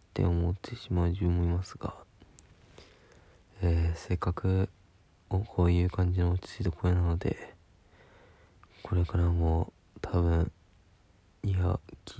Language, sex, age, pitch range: Japanese, male, 20-39, 90-100 Hz